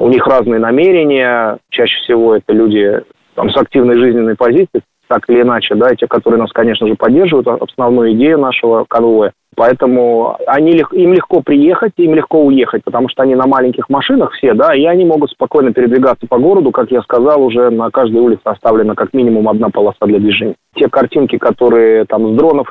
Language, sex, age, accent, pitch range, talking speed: Russian, male, 20-39, native, 115-145 Hz, 185 wpm